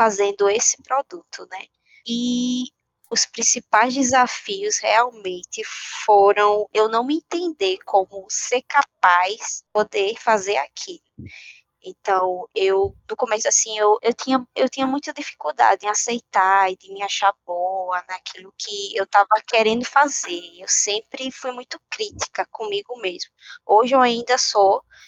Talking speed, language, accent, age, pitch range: 130 wpm, Portuguese, Brazilian, 20-39, 195-265 Hz